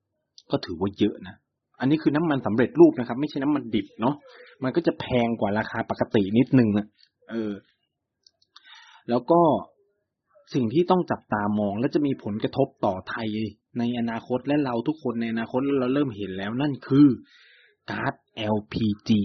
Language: Thai